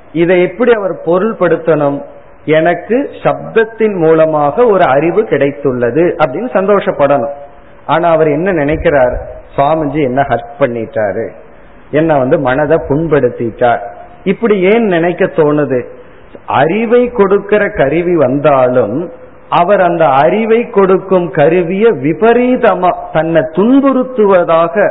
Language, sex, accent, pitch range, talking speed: Tamil, male, native, 140-195 Hz, 95 wpm